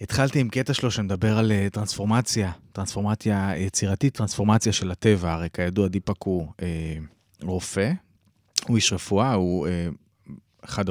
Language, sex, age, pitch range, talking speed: Hebrew, male, 20-39, 95-120 Hz, 145 wpm